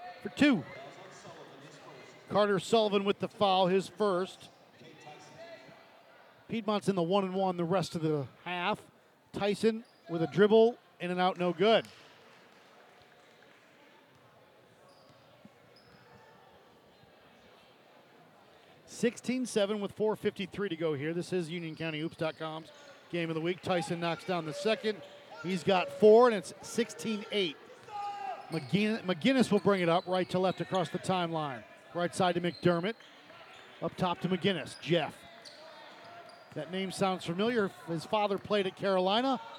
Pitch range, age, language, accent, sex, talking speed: 175-220 Hz, 50-69, English, American, male, 125 wpm